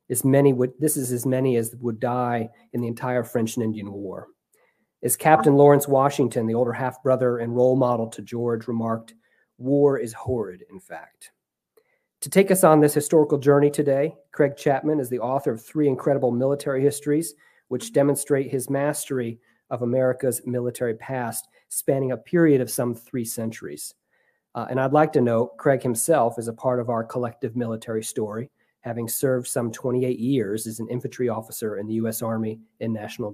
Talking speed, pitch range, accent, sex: 180 wpm, 120-145 Hz, American, male